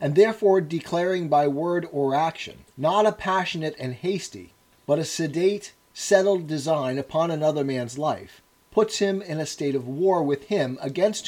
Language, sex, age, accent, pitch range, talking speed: English, male, 40-59, American, 135-180 Hz, 165 wpm